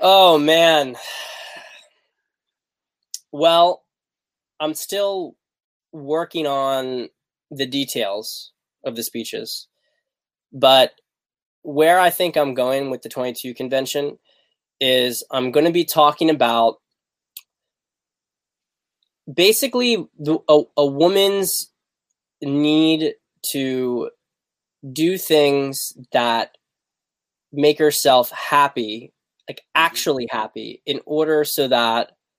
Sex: male